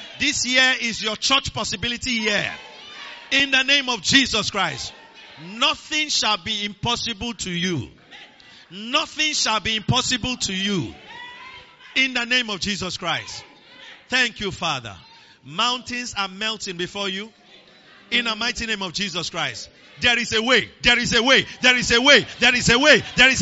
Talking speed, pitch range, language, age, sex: 165 wpm, 200-270 Hz, English, 50-69, male